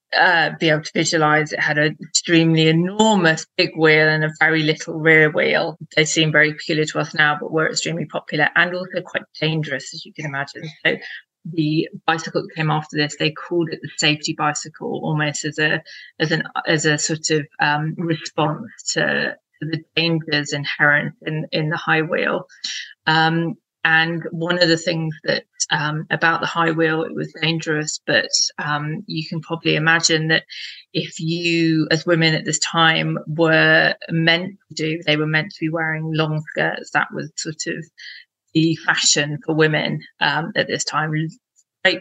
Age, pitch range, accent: 30-49, 155-165 Hz, British